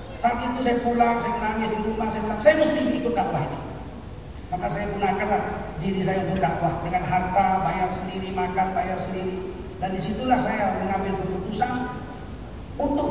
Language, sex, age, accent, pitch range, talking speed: Indonesian, male, 40-59, native, 220-265 Hz, 155 wpm